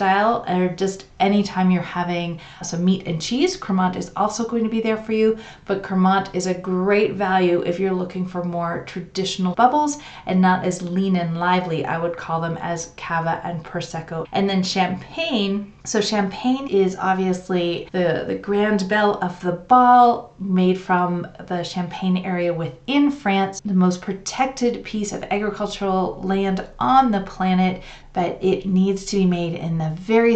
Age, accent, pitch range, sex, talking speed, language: 30-49, American, 180-205 Hz, female, 170 wpm, English